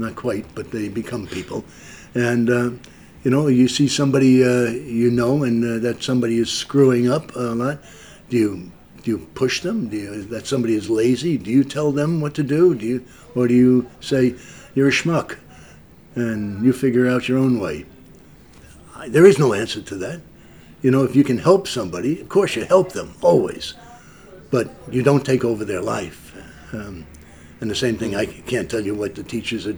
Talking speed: 200 wpm